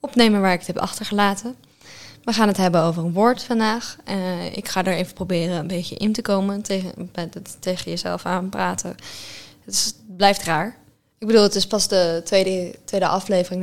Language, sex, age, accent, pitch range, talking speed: Dutch, female, 10-29, Dutch, 175-220 Hz, 200 wpm